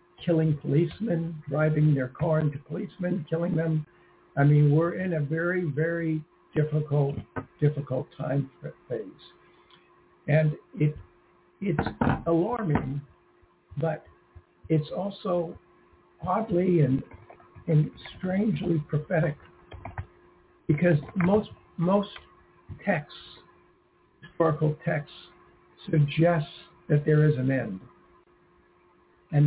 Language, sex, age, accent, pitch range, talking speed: English, male, 60-79, American, 145-165 Hz, 90 wpm